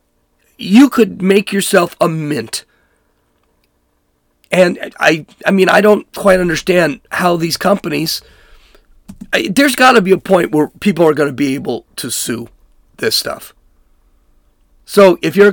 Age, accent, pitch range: 40-59, American, 135-200 Hz